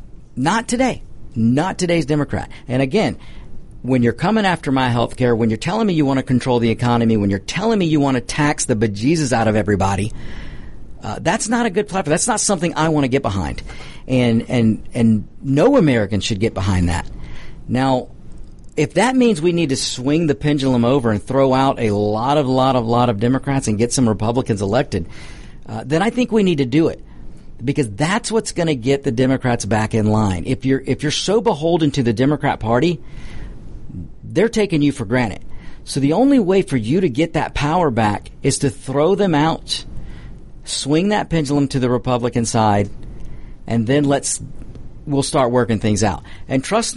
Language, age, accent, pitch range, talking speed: English, 50-69, American, 120-160 Hz, 200 wpm